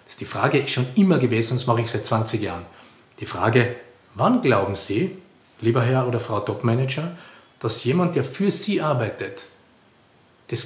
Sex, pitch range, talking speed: male, 120-175 Hz, 175 wpm